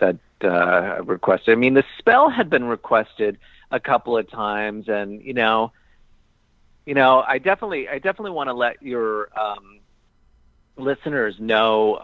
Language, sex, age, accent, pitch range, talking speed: English, male, 40-59, American, 100-130 Hz, 150 wpm